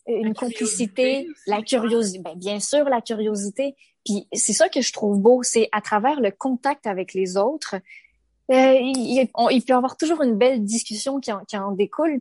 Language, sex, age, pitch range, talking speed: French, female, 20-39, 205-255 Hz, 190 wpm